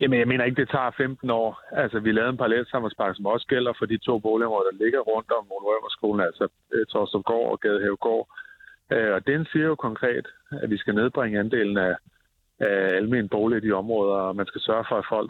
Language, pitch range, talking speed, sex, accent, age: Danish, 110-150 Hz, 215 wpm, male, native, 30-49